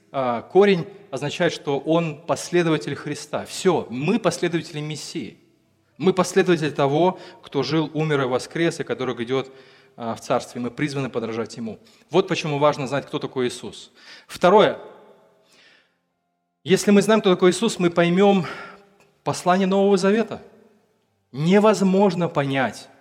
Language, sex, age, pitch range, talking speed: Russian, male, 20-39, 135-185 Hz, 125 wpm